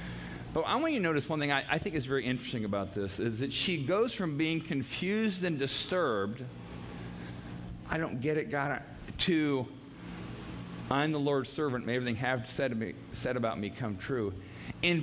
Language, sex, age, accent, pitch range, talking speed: English, male, 40-59, American, 95-150 Hz, 190 wpm